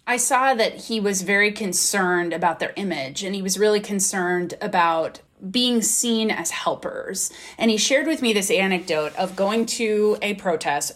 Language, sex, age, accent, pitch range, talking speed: English, female, 20-39, American, 175-235 Hz, 175 wpm